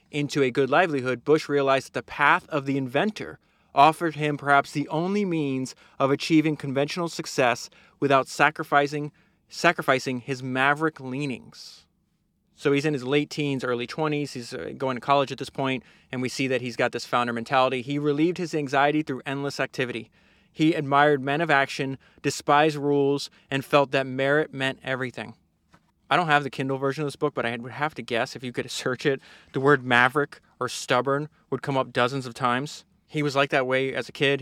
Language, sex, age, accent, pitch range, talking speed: English, male, 20-39, American, 130-150 Hz, 195 wpm